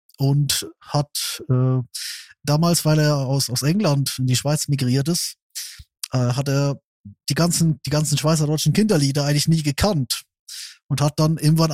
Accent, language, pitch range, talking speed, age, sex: German, German, 135-160 Hz, 160 wpm, 20-39, male